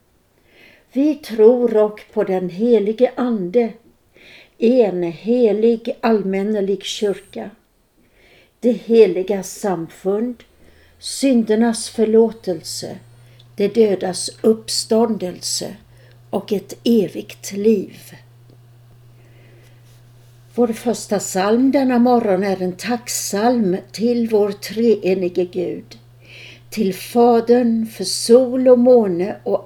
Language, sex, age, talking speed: Swedish, female, 60-79, 85 wpm